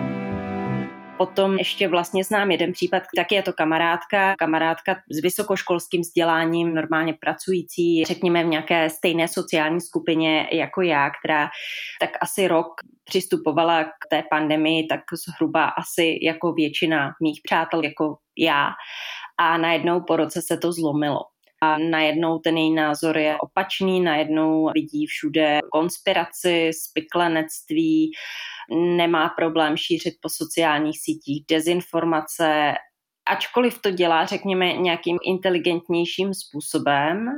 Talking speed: 120 wpm